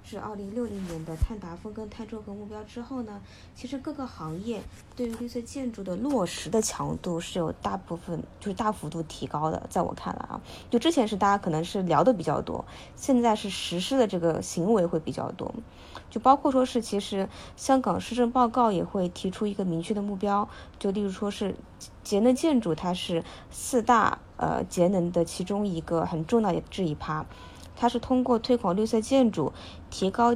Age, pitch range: 20-39, 175-240 Hz